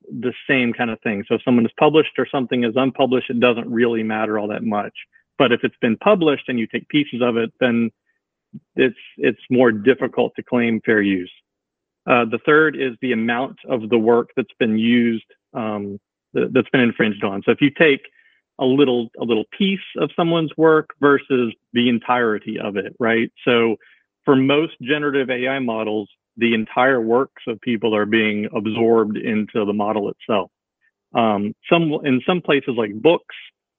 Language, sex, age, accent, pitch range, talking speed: English, male, 40-59, American, 110-135 Hz, 180 wpm